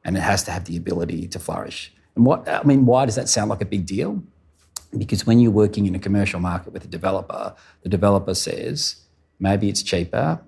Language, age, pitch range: English, 40-59, 85-100 Hz